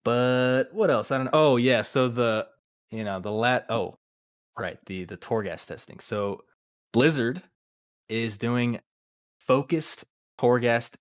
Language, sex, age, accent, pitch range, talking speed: English, male, 20-39, American, 95-115 Hz, 140 wpm